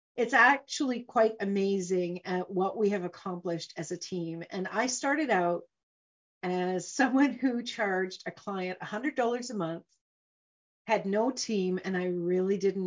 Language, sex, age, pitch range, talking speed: English, female, 40-59, 180-225 Hz, 150 wpm